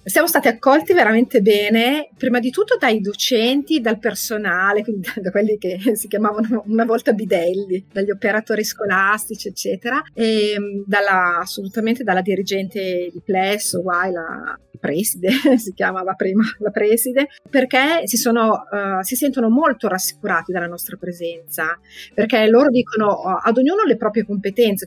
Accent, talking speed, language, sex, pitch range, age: native, 140 wpm, Italian, female, 195-260 Hz, 30-49